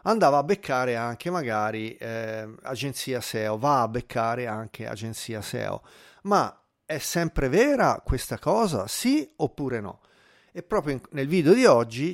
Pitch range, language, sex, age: 120-150 Hz, Italian, male, 40-59